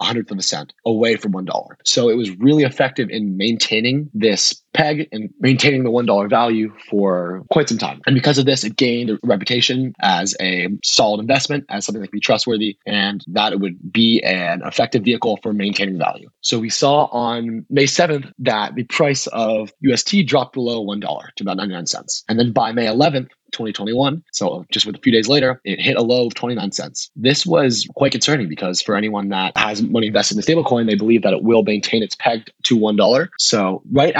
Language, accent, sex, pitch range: English, American, male, 105-135 Hz